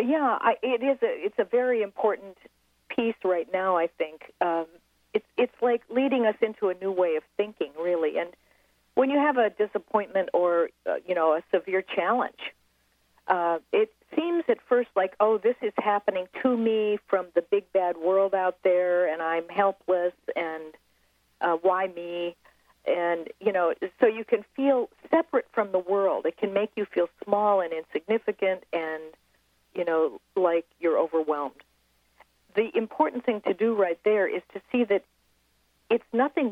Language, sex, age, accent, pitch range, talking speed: English, female, 50-69, American, 170-235 Hz, 165 wpm